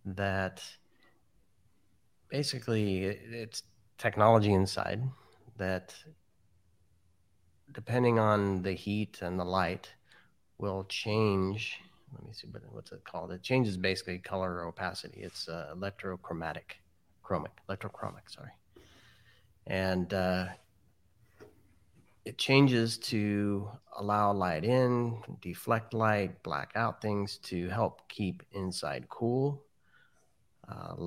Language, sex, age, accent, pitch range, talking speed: English, male, 30-49, American, 90-105 Hz, 100 wpm